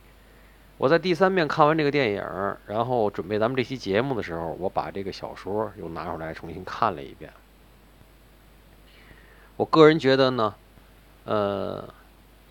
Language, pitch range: Chinese, 100-140 Hz